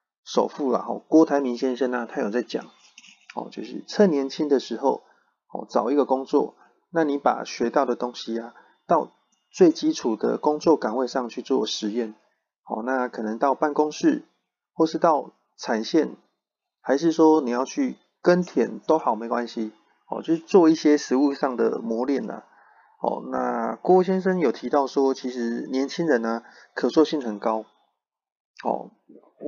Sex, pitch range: male, 125-155 Hz